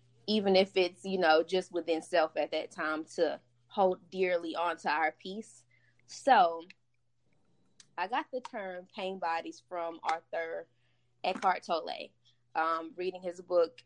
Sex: female